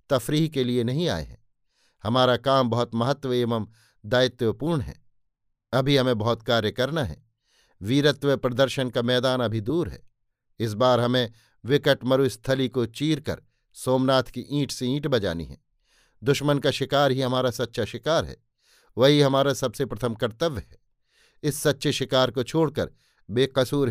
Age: 50-69